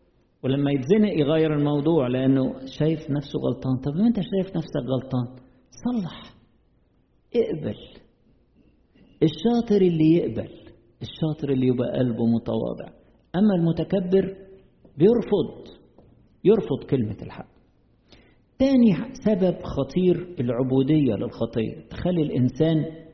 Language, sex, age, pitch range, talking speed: Arabic, male, 50-69, 125-170 Hz, 95 wpm